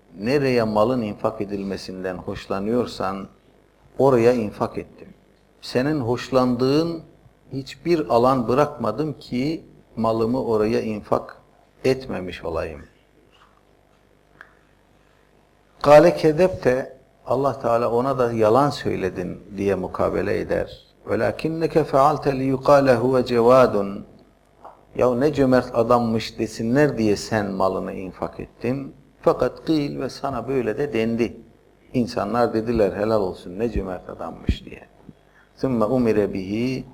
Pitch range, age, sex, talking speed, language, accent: 105-135 Hz, 50-69, male, 100 wpm, Turkish, native